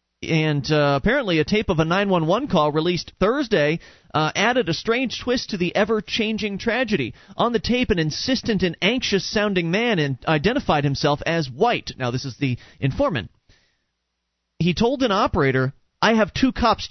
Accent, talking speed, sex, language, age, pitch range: American, 160 wpm, male, English, 30-49, 145-210 Hz